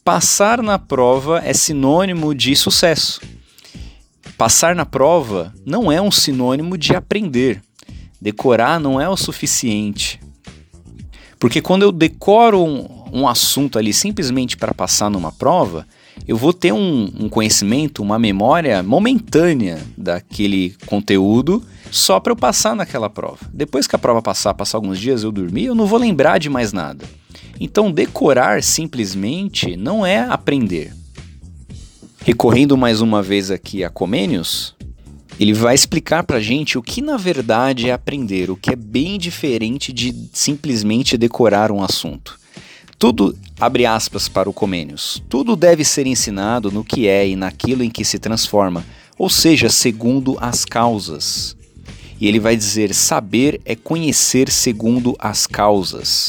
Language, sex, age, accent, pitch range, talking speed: Portuguese, male, 30-49, Brazilian, 100-145 Hz, 145 wpm